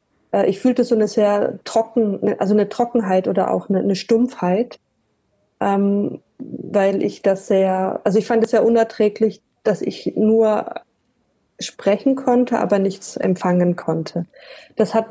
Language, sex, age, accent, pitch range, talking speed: German, female, 20-39, German, 200-230 Hz, 145 wpm